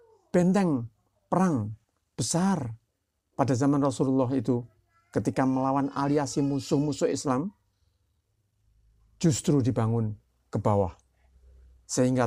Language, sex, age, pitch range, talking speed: Indonesian, male, 50-69, 100-135 Hz, 85 wpm